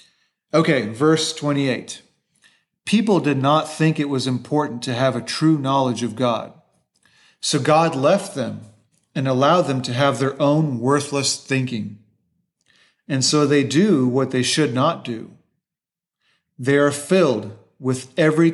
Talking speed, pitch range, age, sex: 140 wpm, 125-155 Hz, 40-59, male